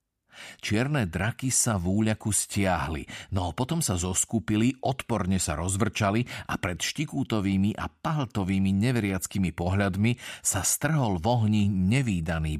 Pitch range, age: 90-110 Hz, 50-69